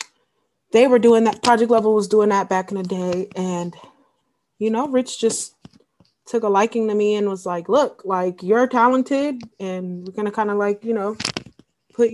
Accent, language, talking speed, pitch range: American, English, 195 wpm, 190-235 Hz